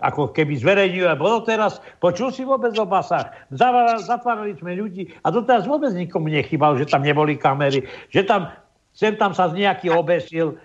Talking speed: 180 wpm